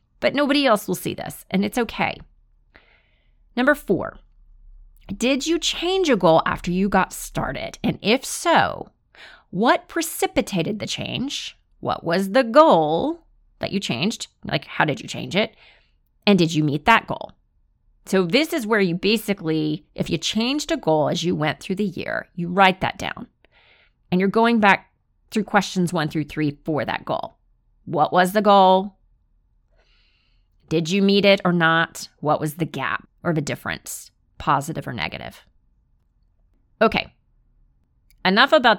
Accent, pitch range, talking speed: American, 155-225 Hz, 160 wpm